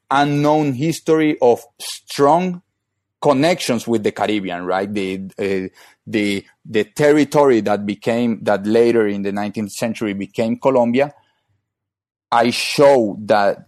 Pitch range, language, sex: 100-120 Hz, English, male